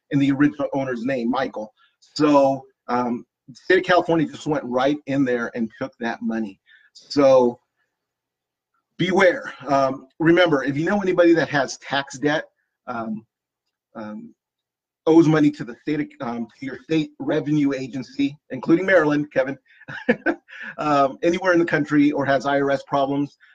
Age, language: 30-49, English